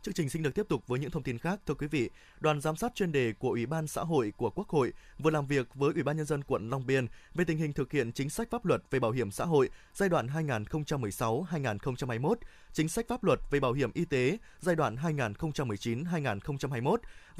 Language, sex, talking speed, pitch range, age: Vietnamese, male, 230 wpm, 135-180 Hz, 20-39